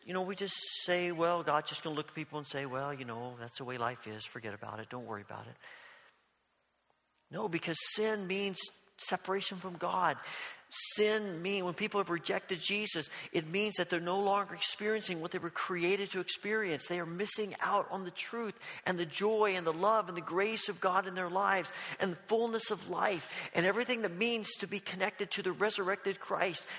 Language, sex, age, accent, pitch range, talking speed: English, male, 40-59, American, 160-205 Hz, 210 wpm